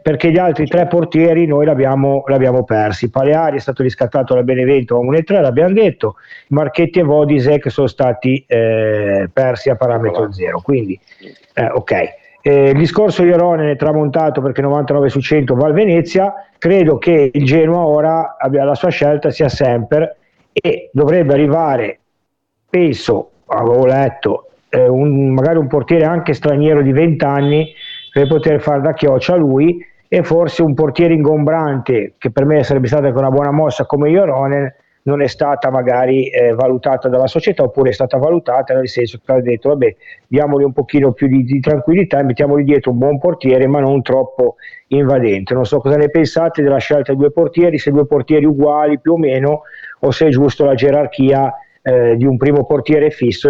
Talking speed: 180 wpm